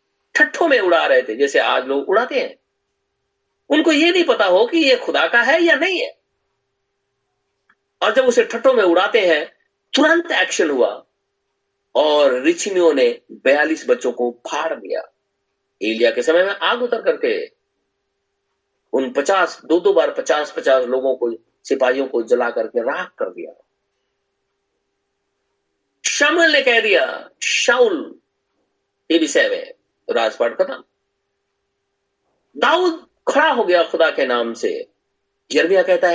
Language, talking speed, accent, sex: Hindi, 135 wpm, native, male